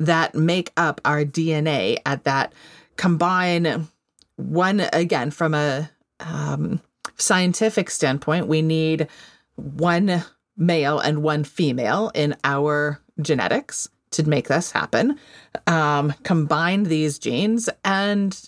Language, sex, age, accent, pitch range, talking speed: English, female, 30-49, American, 160-215 Hz, 110 wpm